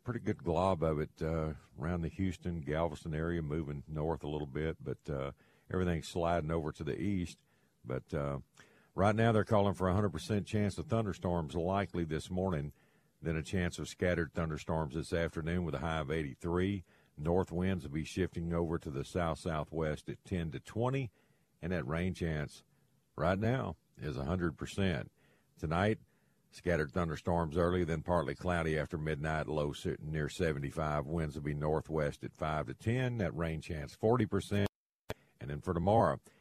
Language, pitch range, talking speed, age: English, 75-90 Hz, 165 wpm, 50-69